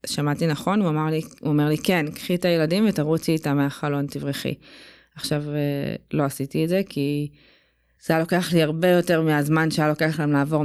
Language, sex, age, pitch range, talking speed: Hebrew, female, 20-39, 145-165 Hz, 180 wpm